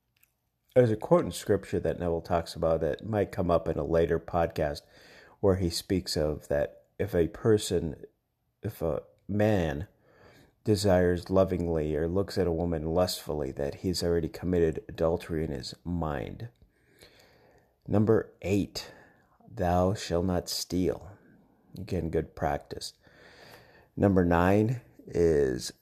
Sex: male